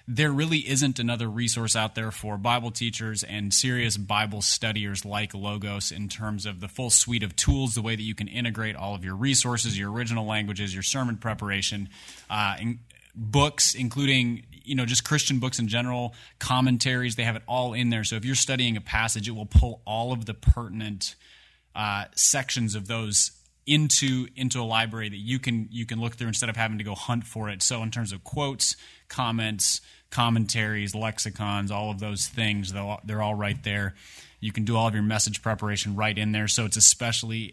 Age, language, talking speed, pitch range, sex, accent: 30-49, English, 200 wpm, 105-120 Hz, male, American